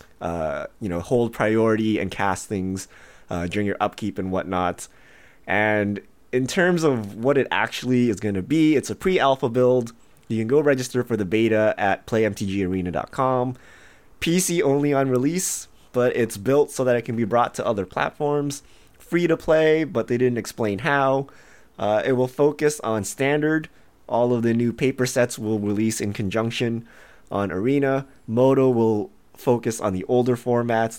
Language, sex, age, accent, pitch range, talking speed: English, male, 20-39, American, 105-130 Hz, 170 wpm